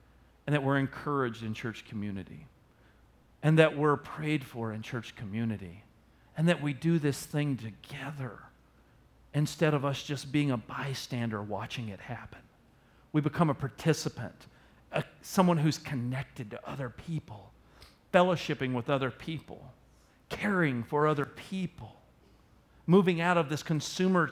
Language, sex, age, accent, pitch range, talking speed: English, male, 40-59, American, 120-150 Hz, 135 wpm